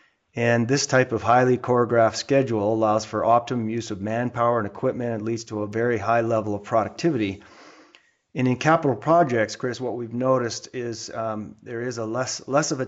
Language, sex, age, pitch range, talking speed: English, male, 30-49, 110-125 Hz, 190 wpm